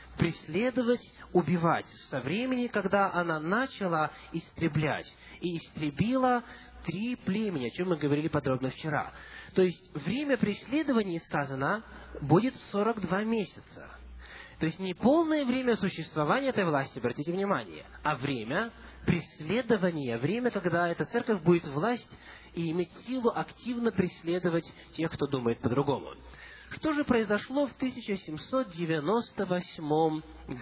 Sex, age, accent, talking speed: male, 20-39, native, 120 wpm